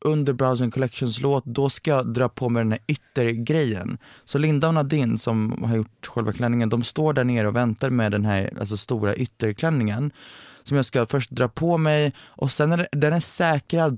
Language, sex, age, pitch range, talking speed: Swedish, male, 20-39, 115-140 Hz, 205 wpm